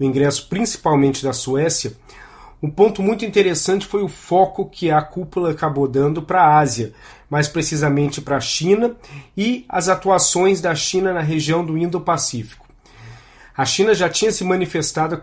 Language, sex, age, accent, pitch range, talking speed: Portuguese, male, 40-59, Brazilian, 140-180 Hz, 160 wpm